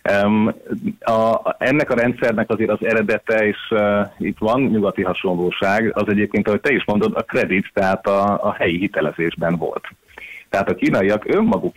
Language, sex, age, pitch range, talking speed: Hungarian, male, 30-49, 95-115 Hz, 165 wpm